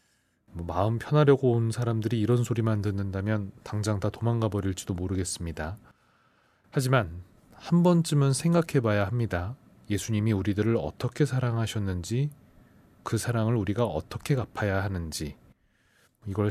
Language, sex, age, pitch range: Korean, male, 30-49, 100-130 Hz